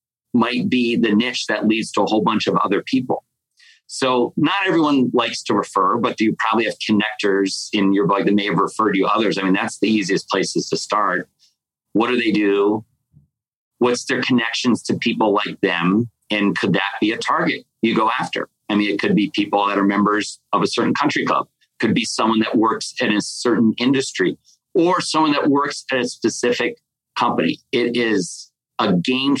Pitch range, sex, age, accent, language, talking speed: 105-125 Hz, male, 40-59, American, English, 200 wpm